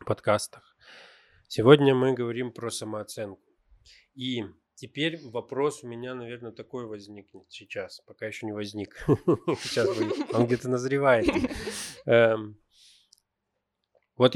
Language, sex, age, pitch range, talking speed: Russian, male, 20-39, 105-130 Hz, 95 wpm